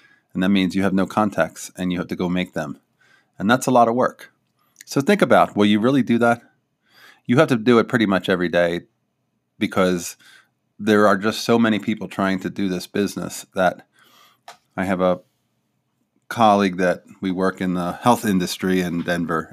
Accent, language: American, English